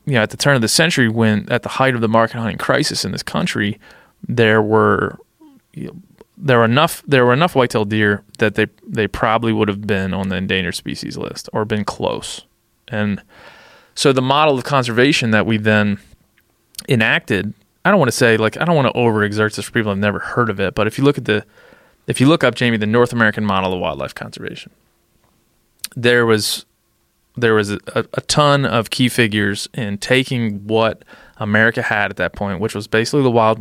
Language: English